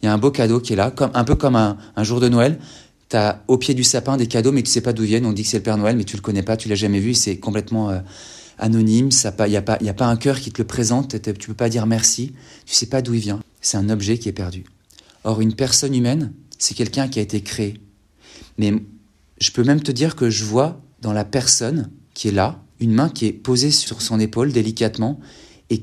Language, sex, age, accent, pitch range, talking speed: French, male, 30-49, French, 105-125 Hz, 285 wpm